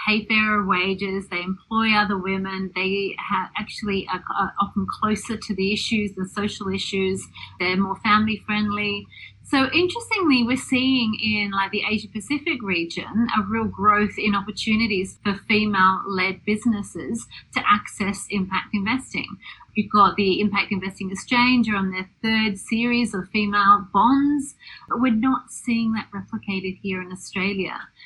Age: 30-49